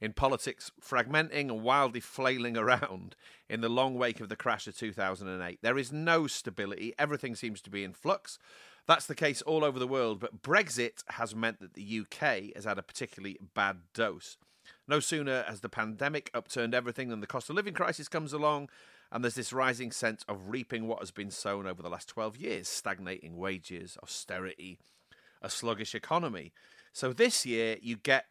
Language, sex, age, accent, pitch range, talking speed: English, male, 40-59, British, 100-140 Hz, 185 wpm